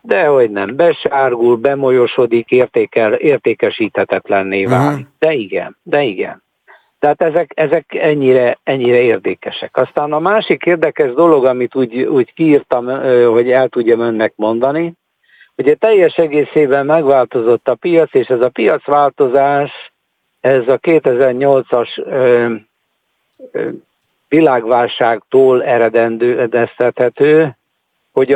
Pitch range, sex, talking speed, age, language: 120-150 Hz, male, 105 wpm, 60-79, Hungarian